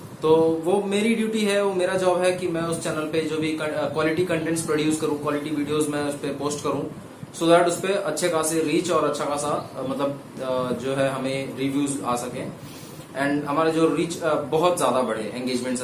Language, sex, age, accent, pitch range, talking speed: Hindi, male, 20-39, native, 140-165 Hz, 195 wpm